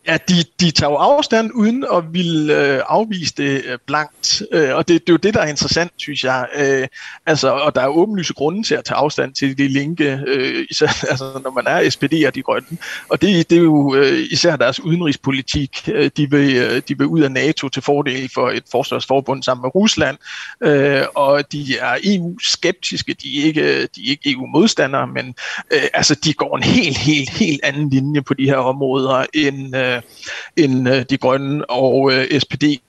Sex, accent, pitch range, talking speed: male, native, 135-170 Hz, 200 wpm